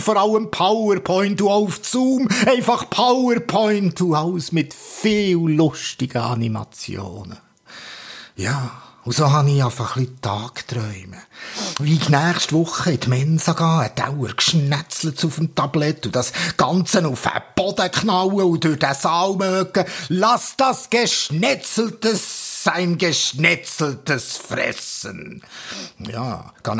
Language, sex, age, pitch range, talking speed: German, male, 50-69, 145-195 Hz, 125 wpm